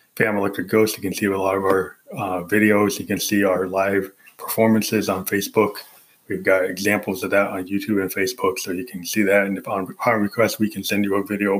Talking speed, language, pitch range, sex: 230 wpm, English, 95-110 Hz, male